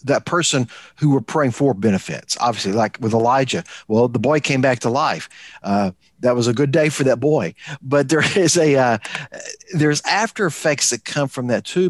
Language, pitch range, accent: English, 115-165 Hz, American